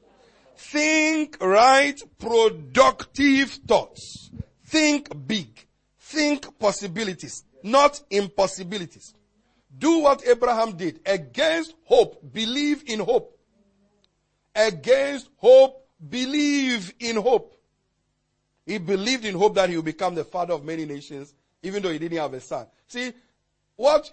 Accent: Nigerian